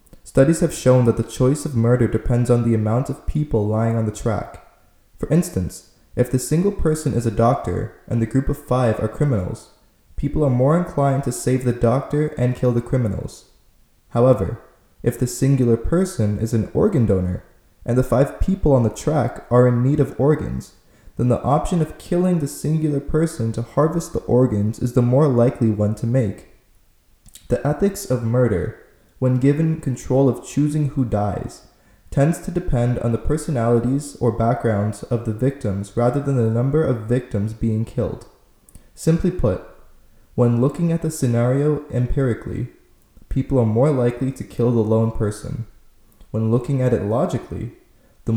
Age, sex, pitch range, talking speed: 20-39, male, 110-140 Hz, 170 wpm